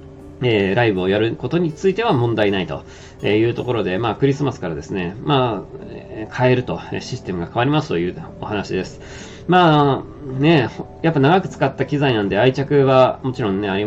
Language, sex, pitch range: Japanese, male, 100-145 Hz